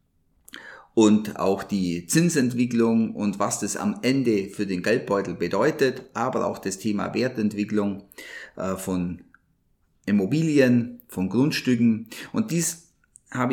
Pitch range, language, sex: 100-130 Hz, German, male